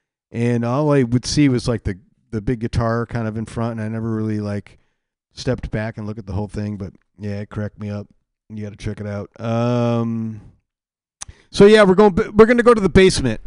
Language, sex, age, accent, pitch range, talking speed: English, male, 40-59, American, 105-130 Hz, 225 wpm